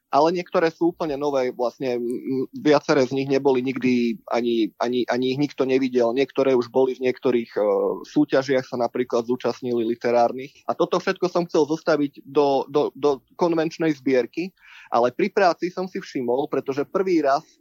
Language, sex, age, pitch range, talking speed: Slovak, male, 20-39, 130-160 Hz, 165 wpm